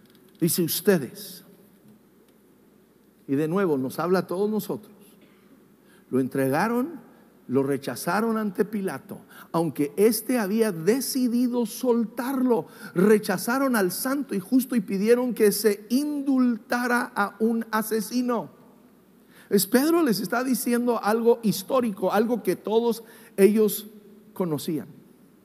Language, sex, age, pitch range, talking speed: English, male, 50-69, 190-235 Hz, 110 wpm